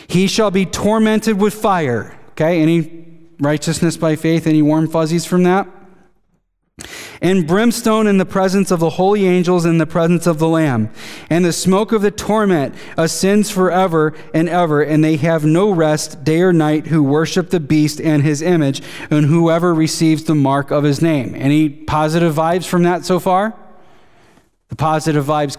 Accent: American